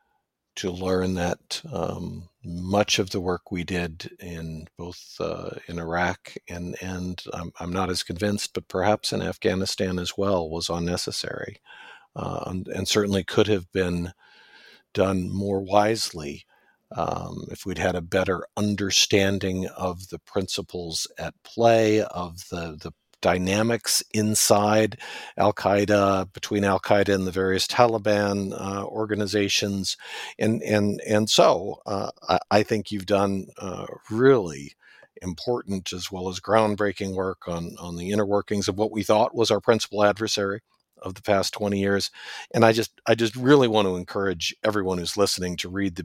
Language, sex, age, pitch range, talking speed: English, male, 50-69, 90-105 Hz, 150 wpm